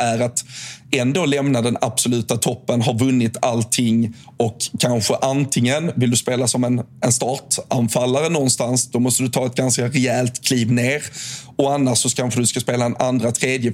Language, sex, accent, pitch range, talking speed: Swedish, male, native, 120-130 Hz, 170 wpm